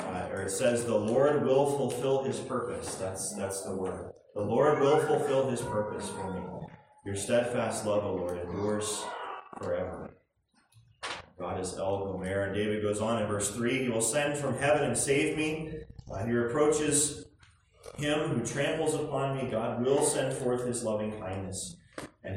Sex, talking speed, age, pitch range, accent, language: male, 165 wpm, 30-49, 105-140 Hz, American, English